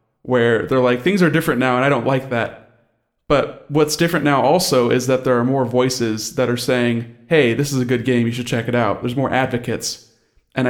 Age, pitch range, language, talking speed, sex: 20-39, 115-135 Hz, English, 230 wpm, male